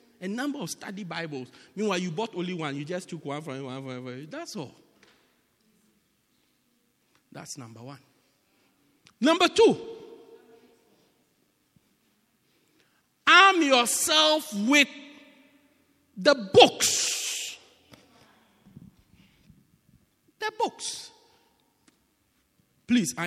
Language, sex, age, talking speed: English, male, 50-69, 80 wpm